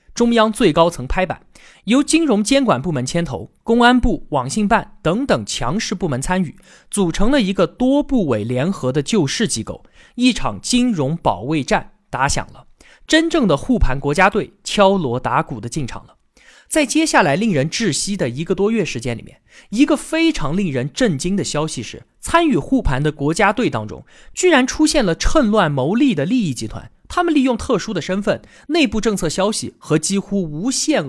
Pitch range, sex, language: 150-235 Hz, male, Chinese